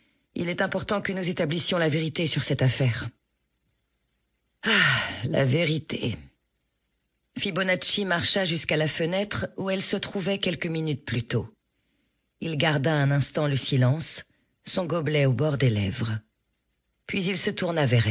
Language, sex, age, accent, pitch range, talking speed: French, female, 40-59, French, 125-175 Hz, 145 wpm